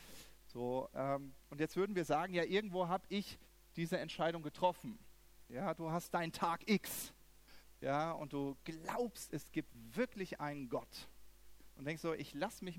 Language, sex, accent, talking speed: German, male, German, 165 wpm